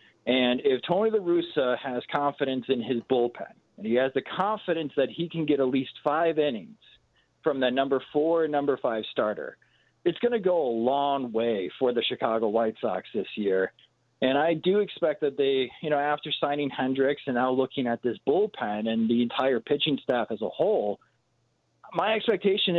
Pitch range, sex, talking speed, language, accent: 130-175 Hz, male, 185 wpm, English, American